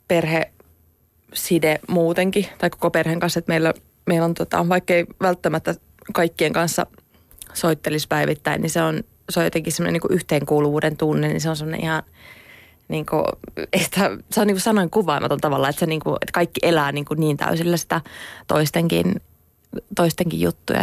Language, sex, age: Finnish, female, 20-39